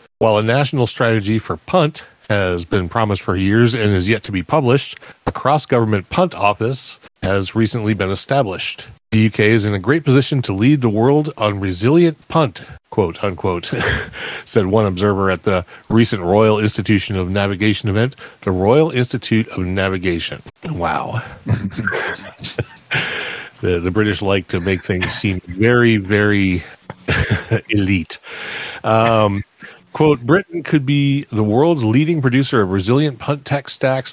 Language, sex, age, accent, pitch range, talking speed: English, male, 40-59, American, 95-130 Hz, 145 wpm